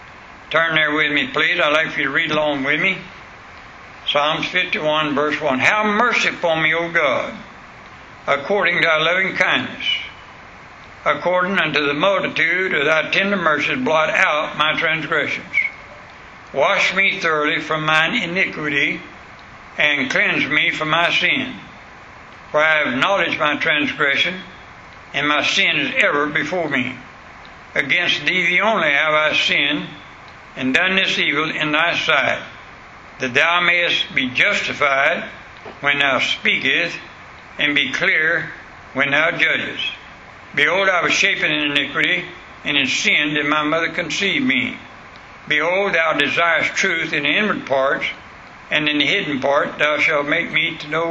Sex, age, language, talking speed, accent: male, 60-79, English, 150 wpm, American